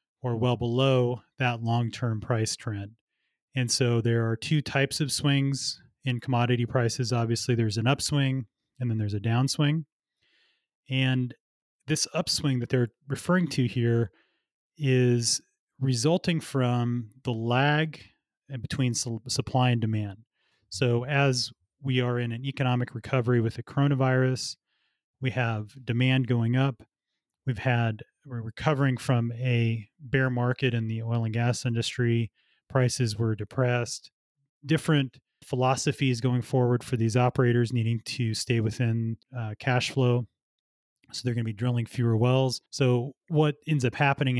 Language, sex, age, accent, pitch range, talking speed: English, male, 30-49, American, 115-135 Hz, 140 wpm